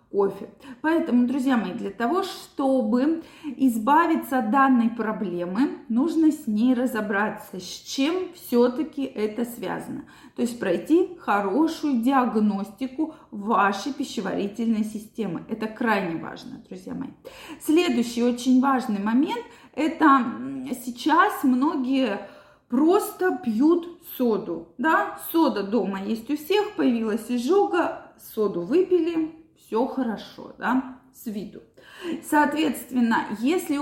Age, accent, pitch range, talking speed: 20-39, native, 230-300 Hz, 105 wpm